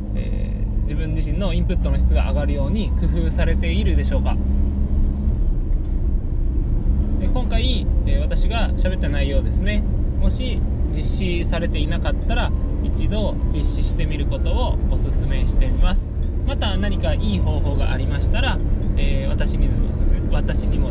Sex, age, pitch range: male, 20-39, 65-75 Hz